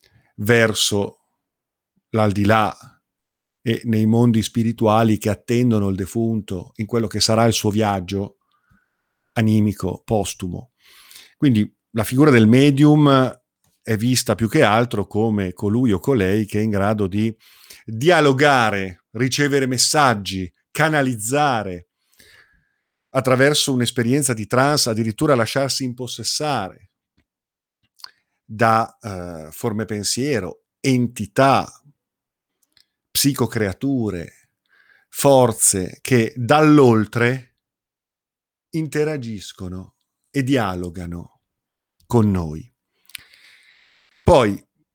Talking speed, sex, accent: 85 wpm, male, native